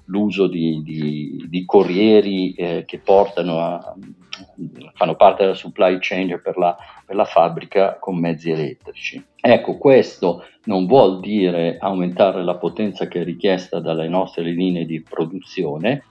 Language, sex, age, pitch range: Italian, male, 50-69, 90-110 Hz